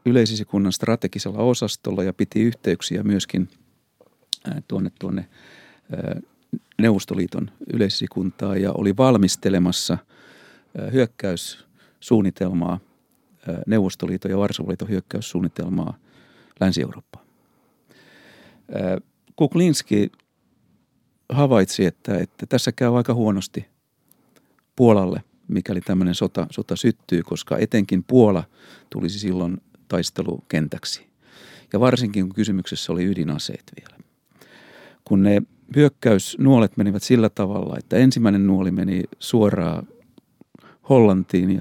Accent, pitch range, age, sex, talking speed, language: native, 95-115 Hz, 50-69, male, 85 wpm, Finnish